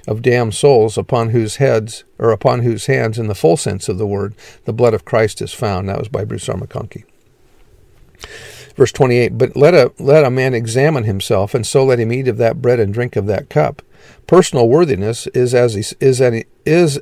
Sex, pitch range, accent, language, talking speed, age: male, 110-135 Hz, American, English, 210 wpm, 50-69